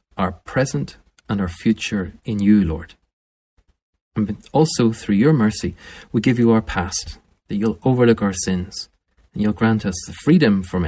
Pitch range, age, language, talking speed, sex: 80-110 Hz, 30-49, English, 165 wpm, male